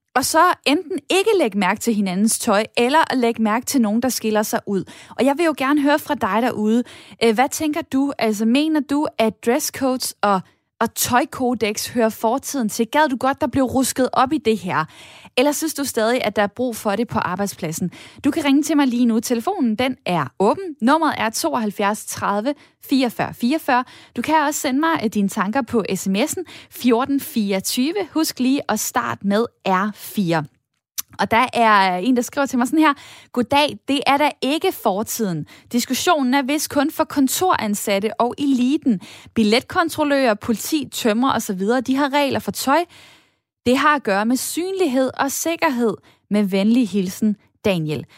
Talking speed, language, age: 180 wpm, Danish, 10-29